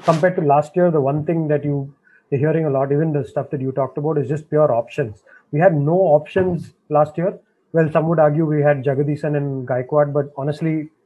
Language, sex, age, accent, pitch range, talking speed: English, male, 20-39, Indian, 140-170 Hz, 220 wpm